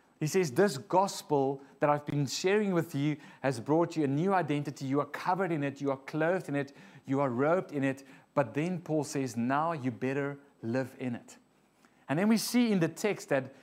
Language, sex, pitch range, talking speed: English, male, 140-180 Hz, 215 wpm